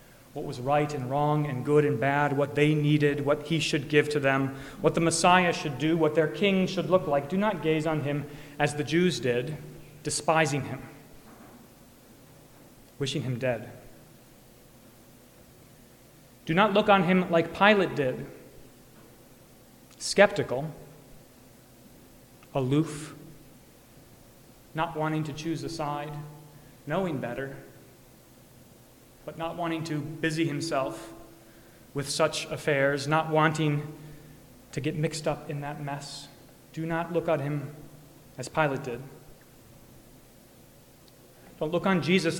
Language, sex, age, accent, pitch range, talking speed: English, male, 30-49, American, 135-155 Hz, 130 wpm